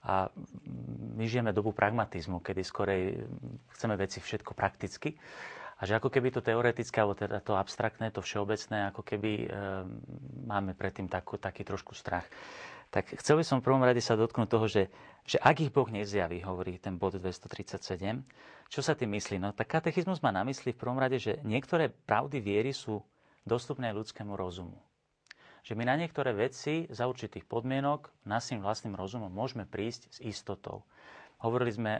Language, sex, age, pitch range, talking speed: Slovak, male, 40-59, 95-125 Hz, 160 wpm